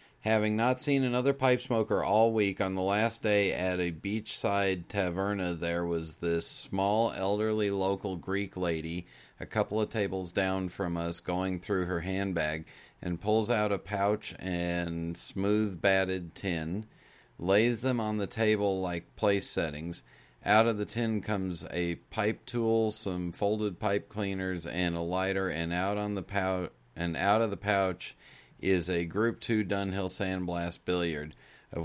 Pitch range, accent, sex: 90-115 Hz, American, male